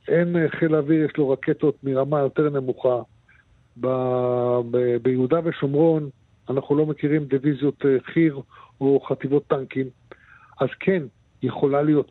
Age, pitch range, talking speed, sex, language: 50-69, 125-155 Hz, 125 wpm, male, English